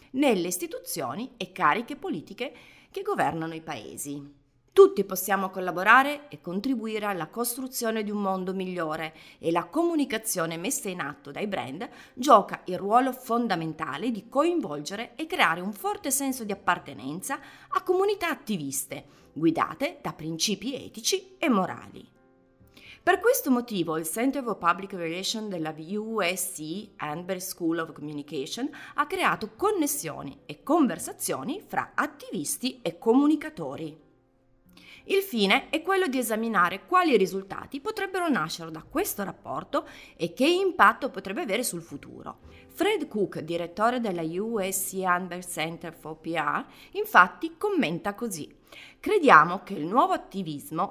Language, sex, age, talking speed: Italian, female, 30-49, 130 wpm